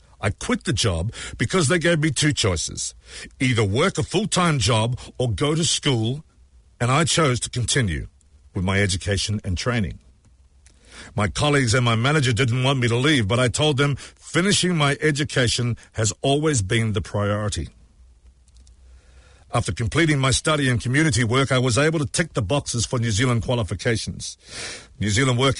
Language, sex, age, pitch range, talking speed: English, male, 50-69, 105-145 Hz, 170 wpm